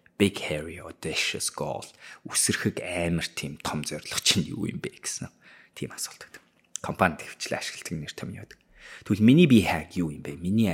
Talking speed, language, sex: 105 wpm, English, male